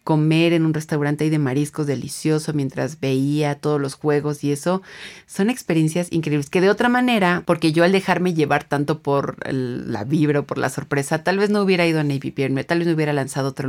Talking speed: 220 wpm